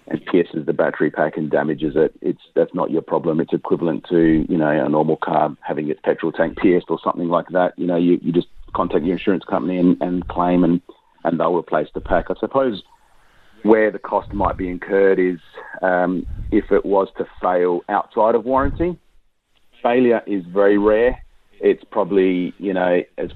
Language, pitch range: English, 90-105 Hz